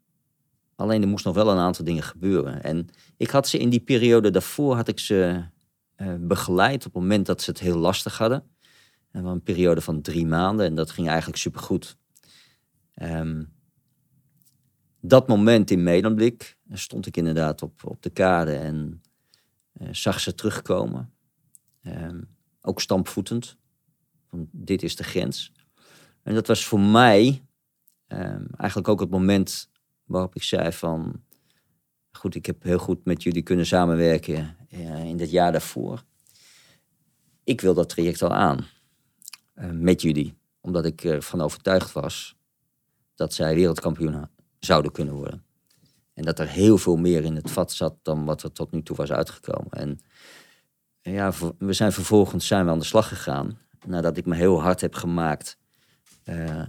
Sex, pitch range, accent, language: male, 80-105 Hz, Dutch, Dutch